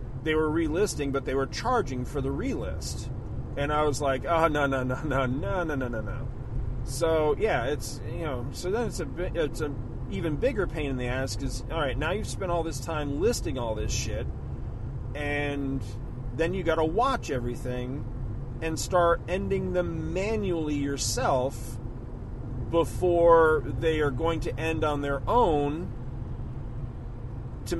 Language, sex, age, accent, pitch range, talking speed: English, male, 40-59, American, 120-145 Hz, 165 wpm